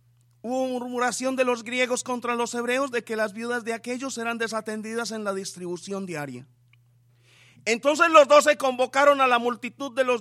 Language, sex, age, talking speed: English, male, 30-49, 175 wpm